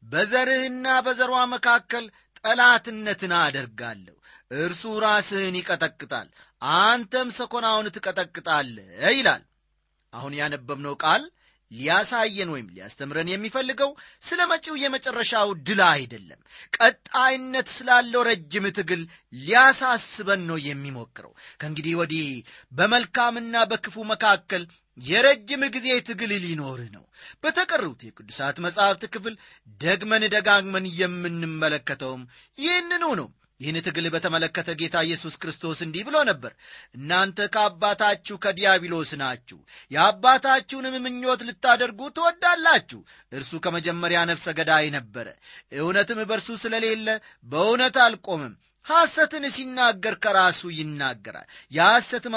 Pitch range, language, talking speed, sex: 160-245 Hz, Amharic, 95 wpm, male